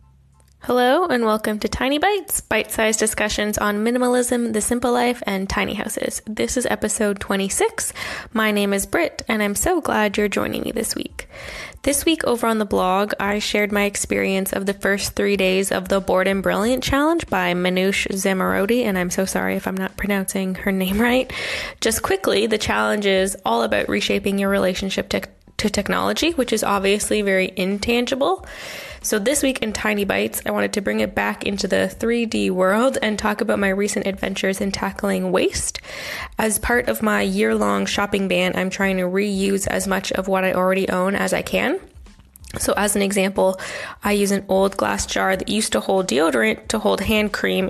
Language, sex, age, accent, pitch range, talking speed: English, female, 10-29, American, 190-225 Hz, 190 wpm